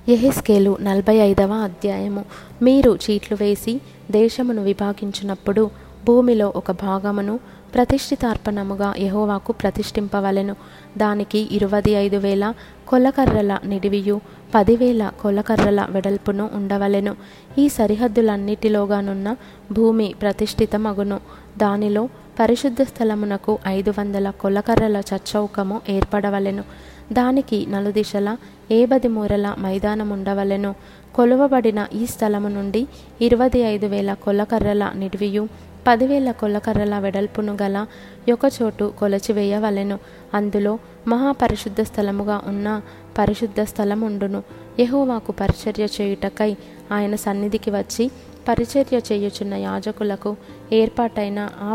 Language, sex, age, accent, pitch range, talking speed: Telugu, female, 20-39, native, 200-225 Hz, 80 wpm